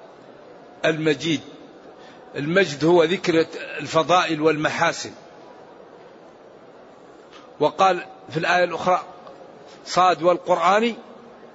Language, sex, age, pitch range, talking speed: Arabic, male, 50-69, 175-195 Hz, 60 wpm